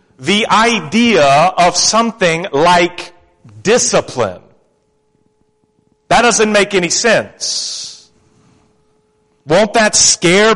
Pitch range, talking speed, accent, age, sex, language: 115-175 Hz, 80 wpm, American, 40-59, male, English